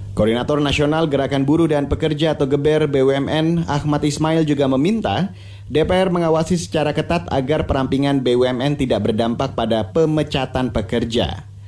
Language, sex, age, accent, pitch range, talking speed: Indonesian, male, 30-49, native, 120-160 Hz, 130 wpm